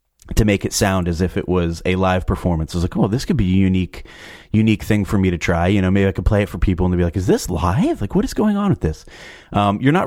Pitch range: 90-110 Hz